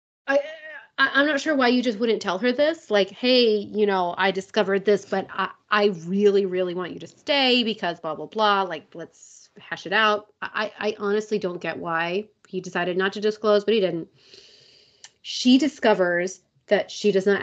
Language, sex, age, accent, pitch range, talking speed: English, female, 30-49, American, 190-225 Hz, 190 wpm